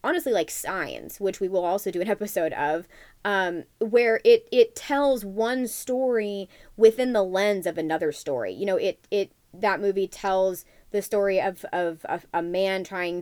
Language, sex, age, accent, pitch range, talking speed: English, female, 20-39, American, 170-220 Hz, 175 wpm